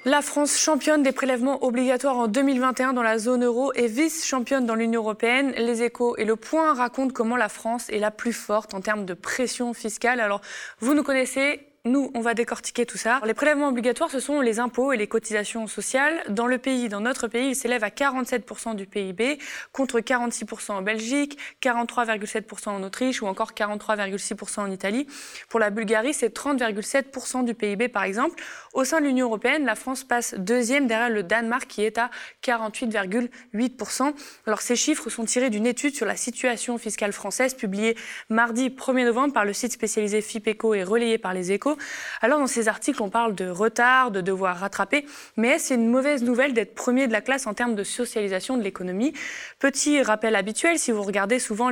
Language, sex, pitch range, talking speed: French, female, 215-260 Hz, 195 wpm